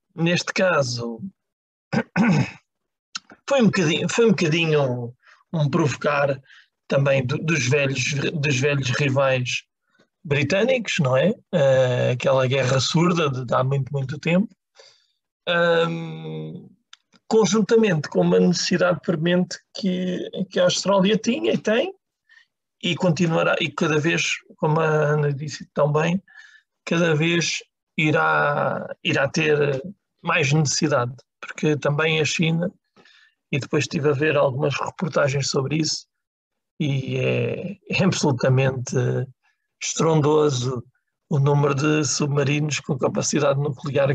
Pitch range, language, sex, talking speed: 140-180 Hz, Portuguese, male, 105 wpm